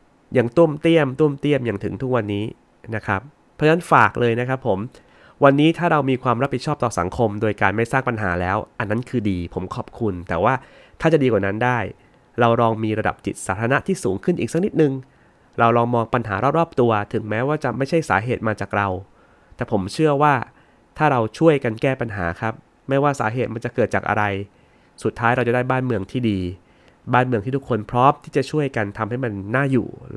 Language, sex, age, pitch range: Thai, male, 20-39, 105-135 Hz